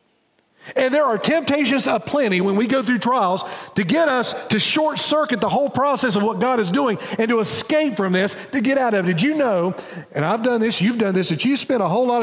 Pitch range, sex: 150-250 Hz, male